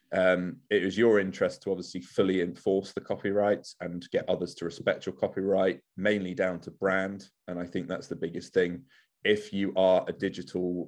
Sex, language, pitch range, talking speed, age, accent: male, English, 85-95 Hz, 190 wpm, 20-39, British